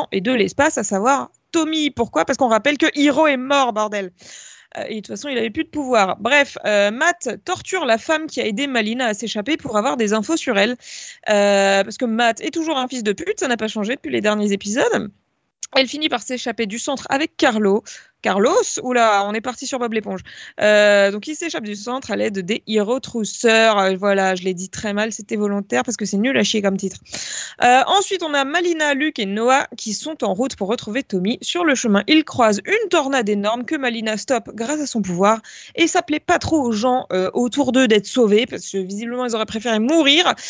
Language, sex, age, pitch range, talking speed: French, female, 20-39, 210-280 Hz, 225 wpm